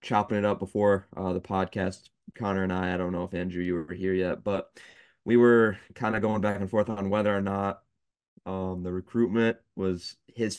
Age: 20-39